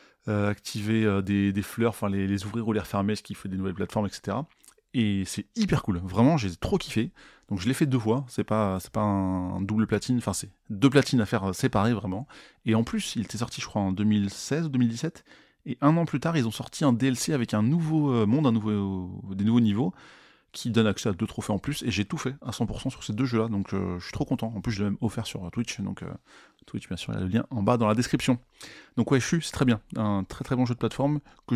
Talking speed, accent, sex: 275 wpm, French, male